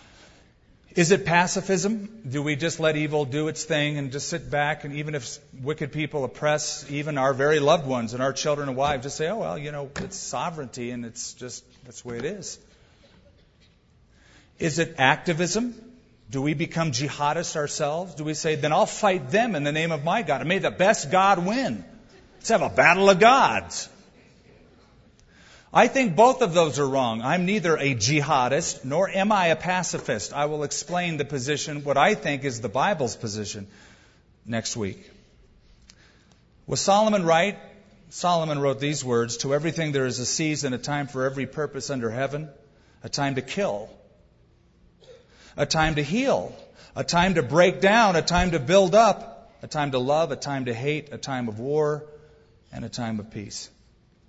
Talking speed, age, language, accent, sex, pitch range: 180 wpm, 40-59, English, American, male, 135-170 Hz